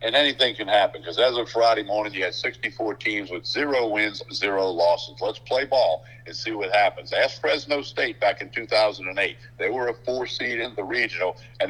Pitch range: 105-125 Hz